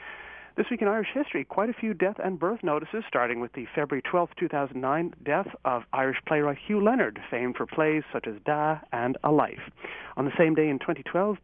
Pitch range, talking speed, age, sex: 140-185 Hz, 205 wpm, 40-59, male